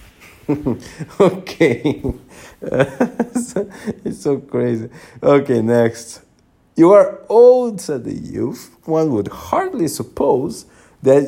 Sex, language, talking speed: male, English, 90 wpm